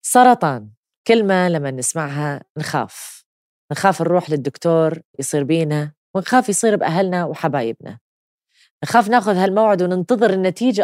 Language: English